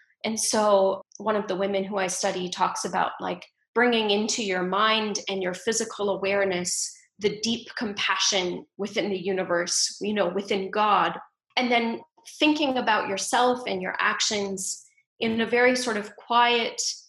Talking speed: 155 wpm